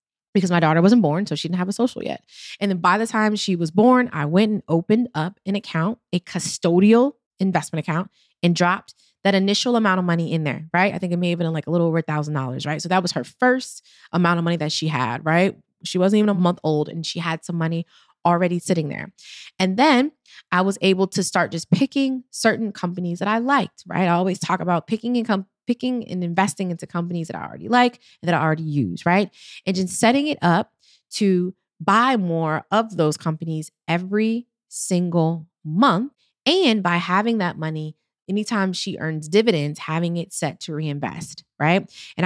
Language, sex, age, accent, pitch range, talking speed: English, female, 20-39, American, 165-210 Hz, 205 wpm